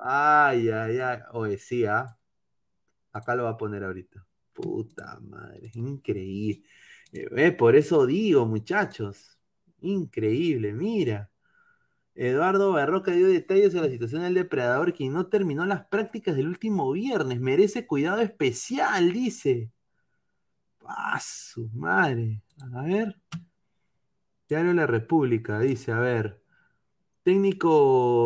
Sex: male